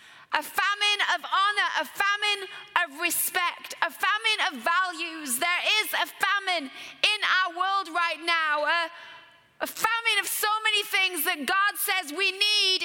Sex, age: female, 30-49